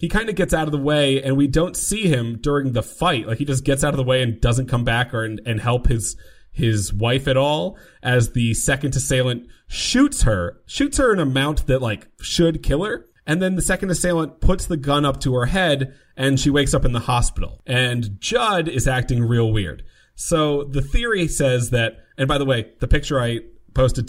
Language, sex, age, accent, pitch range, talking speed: English, male, 30-49, American, 115-140 Hz, 225 wpm